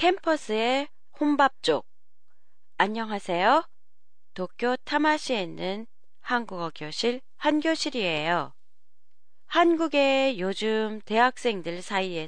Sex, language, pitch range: female, Japanese, 190-285 Hz